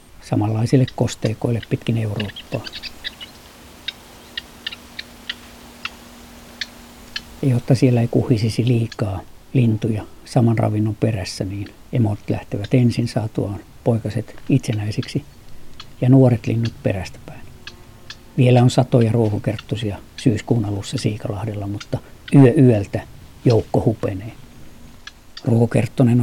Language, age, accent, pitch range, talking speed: Finnish, 50-69, native, 105-125 Hz, 85 wpm